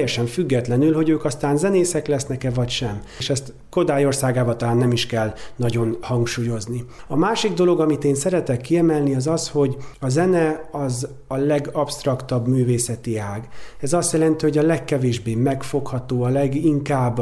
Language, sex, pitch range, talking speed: Hungarian, male, 120-150 Hz, 155 wpm